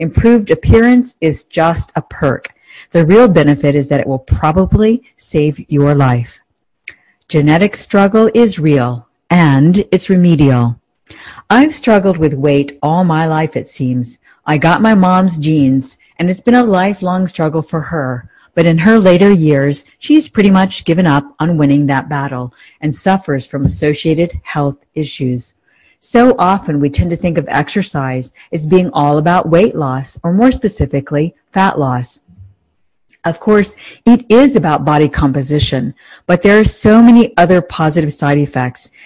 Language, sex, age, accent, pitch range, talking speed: English, female, 50-69, American, 140-190 Hz, 155 wpm